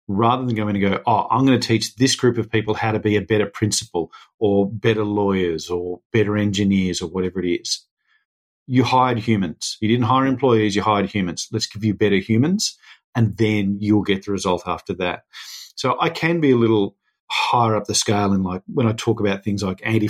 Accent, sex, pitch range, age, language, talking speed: Australian, male, 100-115 Hz, 40-59, English, 215 wpm